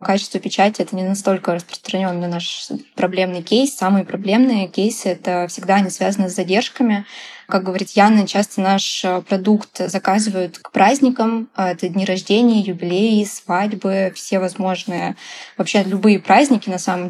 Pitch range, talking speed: 185-220 Hz, 135 wpm